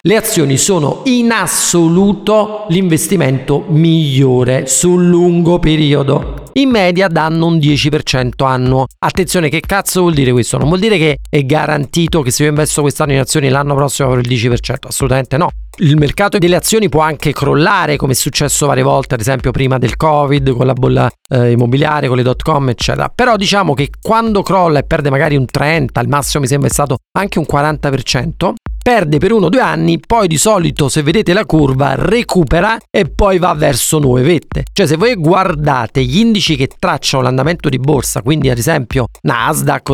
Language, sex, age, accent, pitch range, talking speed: Italian, male, 40-59, native, 135-180 Hz, 185 wpm